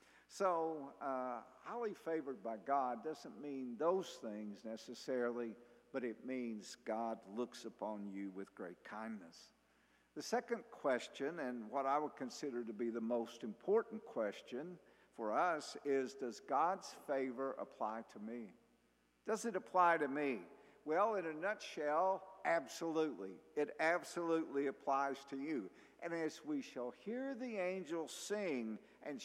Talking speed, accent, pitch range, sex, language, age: 140 wpm, American, 125-200 Hz, male, English, 50-69